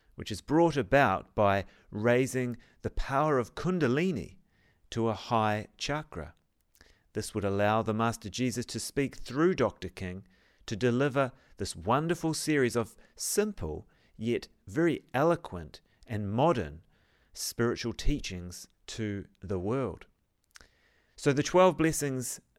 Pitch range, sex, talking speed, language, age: 95-135 Hz, male, 120 wpm, English, 40-59